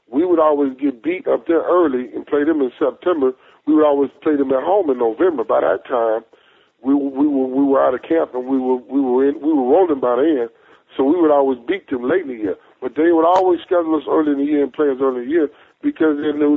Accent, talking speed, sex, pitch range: American, 270 wpm, male, 135-195 Hz